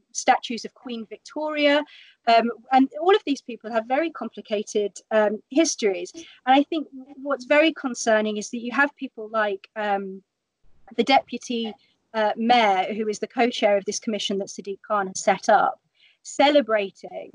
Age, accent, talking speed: 30-49, British, 160 wpm